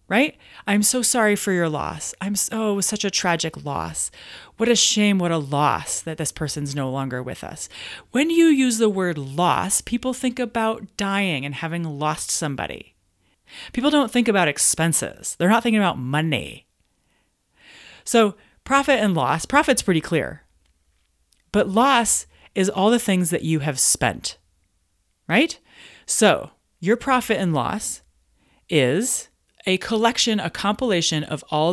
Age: 30-49